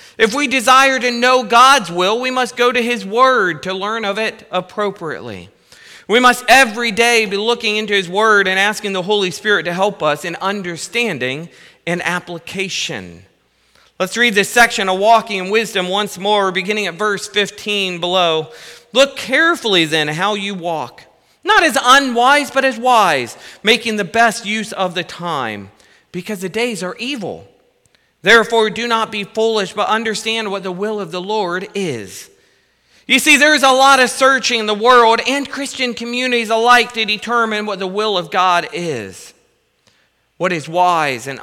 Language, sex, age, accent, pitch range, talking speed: English, male, 40-59, American, 175-235 Hz, 170 wpm